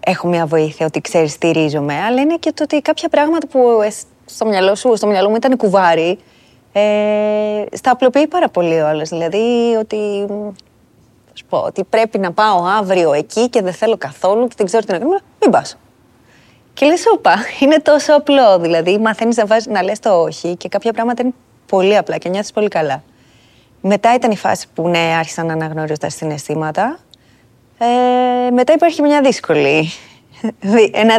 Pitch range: 160-215 Hz